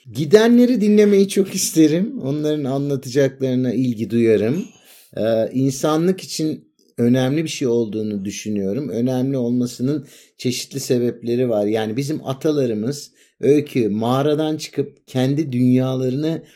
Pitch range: 120-150 Hz